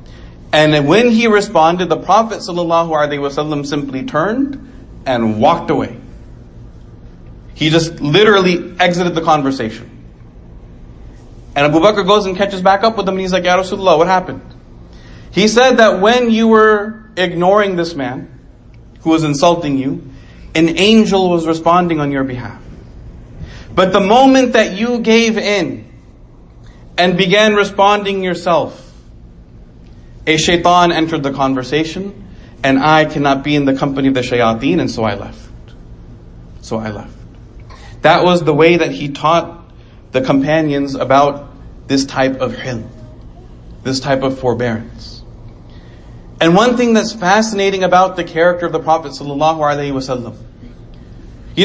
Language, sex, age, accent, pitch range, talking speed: English, male, 40-59, American, 125-190 Hz, 140 wpm